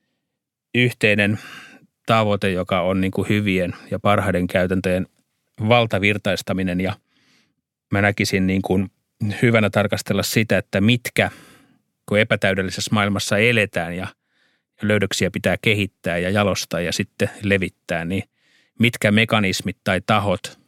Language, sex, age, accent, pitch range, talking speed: Finnish, male, 30-49, native, 95-110 Hz, 100 wpm